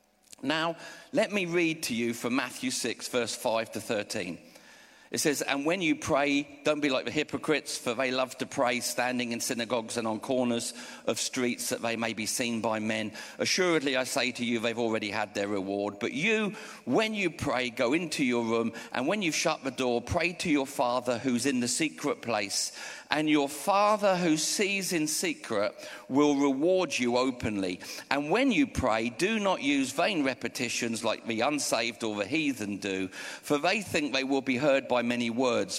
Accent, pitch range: British, 120-160 Hz